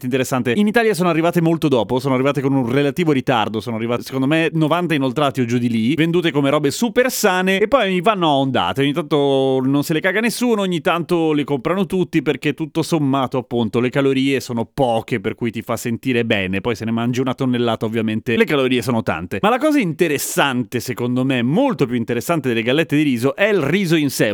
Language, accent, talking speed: Italian, native, 220 wpm